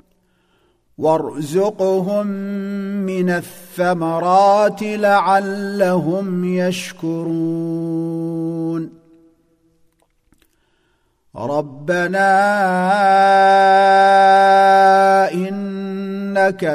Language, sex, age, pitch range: Arabic, male, 50-69, 180-200 Hz